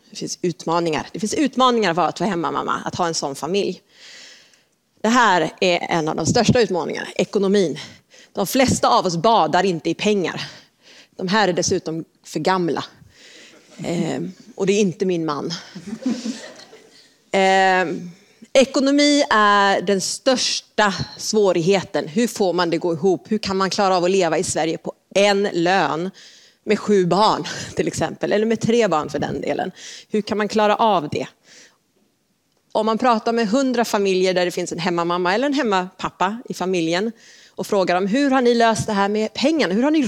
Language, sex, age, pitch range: Swedish, female, 30-49, 180-225 Hz